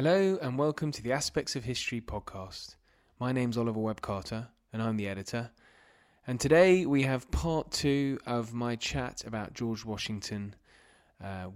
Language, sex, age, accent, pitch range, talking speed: English, male, 20-39, British, 100-130 Hz, 160 wpm